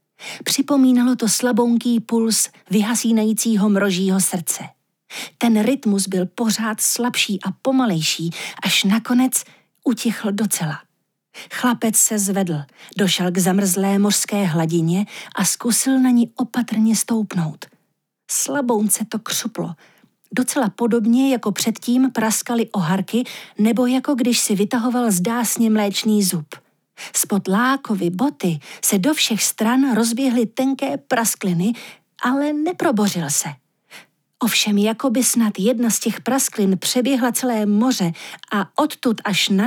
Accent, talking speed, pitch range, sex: native, 115 wpm, 195-250 Hz, female